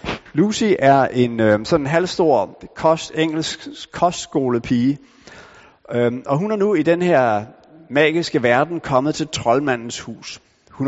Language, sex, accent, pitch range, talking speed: Danish, male, native, 120-160 Hz, 130 wpm